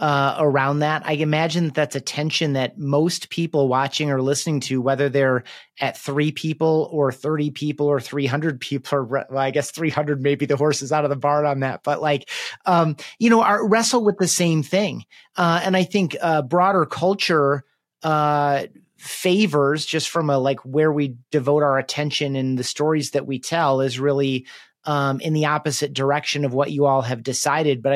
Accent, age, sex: American, 30-49, male